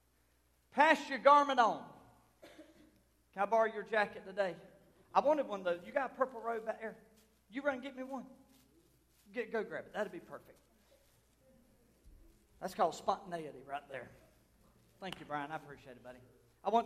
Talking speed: 175 wpm